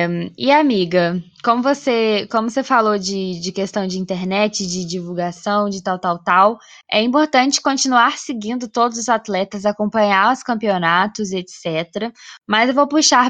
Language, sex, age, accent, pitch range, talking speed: Portuguese, female, 10-29, Brazilian, 195-255 Hz, 145 wpm